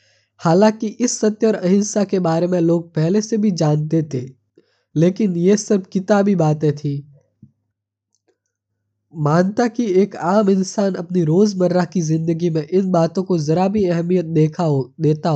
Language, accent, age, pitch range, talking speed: Hindi, native, 20-39, 150-195 Hz, 150 wpm